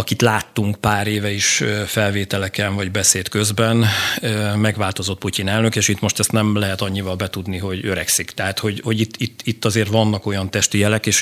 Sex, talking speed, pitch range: male, 180 wpm, 100-115 Hz